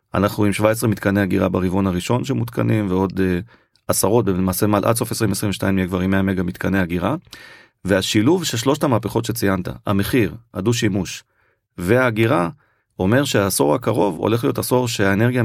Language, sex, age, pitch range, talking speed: Hebrew, male, 30-49, 95-115 Hz, 150 wpm